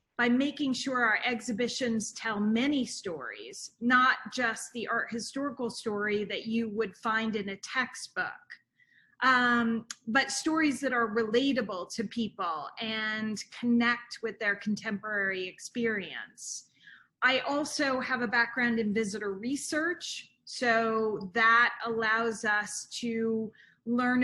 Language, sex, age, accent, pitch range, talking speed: English, female, 30-49, American, 215-250 Hz, 120 wpm